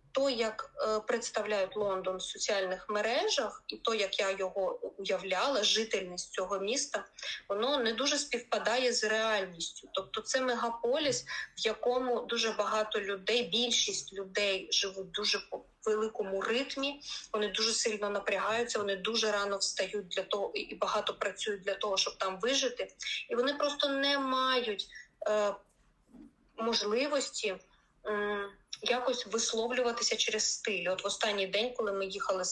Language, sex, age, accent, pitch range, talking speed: Ukrainian, female, 20-39, native, 195-240 Hz, 140 wpm